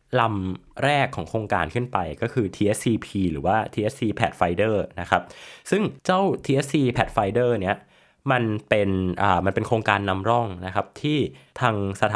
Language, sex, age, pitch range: Thai, male, 20-39, 90-120 Hz